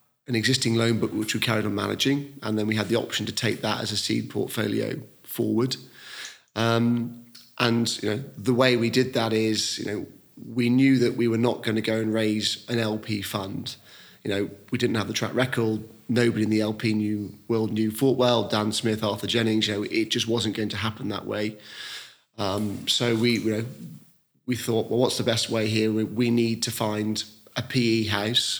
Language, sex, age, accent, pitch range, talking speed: English, male, 30-49, British, 110-120 Hz, 210 wpm